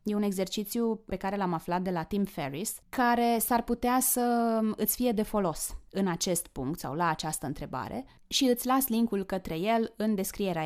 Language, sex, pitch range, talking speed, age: Romanian, female, 170-235 Hz, 190 wpm, 20-39